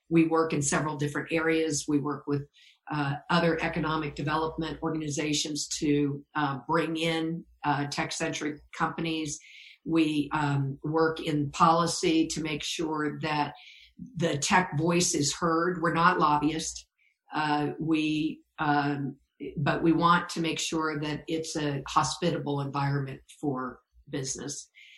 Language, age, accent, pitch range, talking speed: English, 50-69, American, 150-170 Hz, 130 wpm